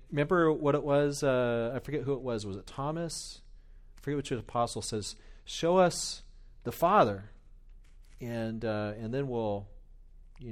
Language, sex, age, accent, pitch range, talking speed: English, male, 40-59, American, 100-130 Hz, 160 wpm